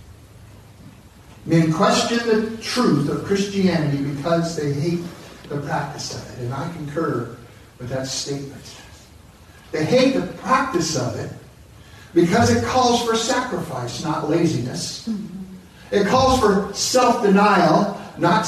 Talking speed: 120 wpm